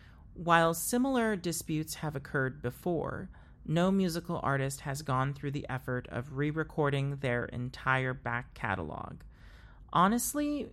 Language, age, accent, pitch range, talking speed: English, 40-59, American, 130-170 Hz, 125 wpm